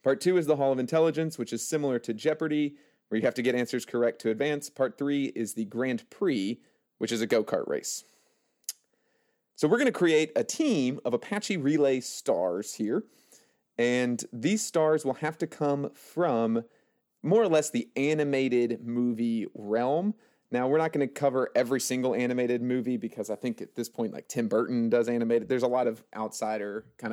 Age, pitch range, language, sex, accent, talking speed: 30-49, 120-165 Hz, English, male, American, 190 wpm